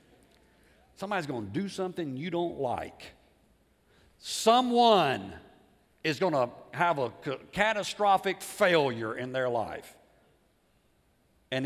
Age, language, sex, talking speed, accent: 50-69, English, male, 105 wpm, American